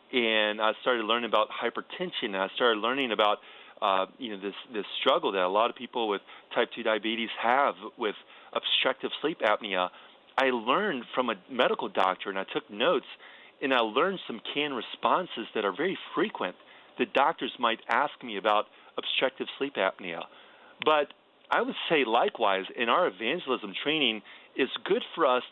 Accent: American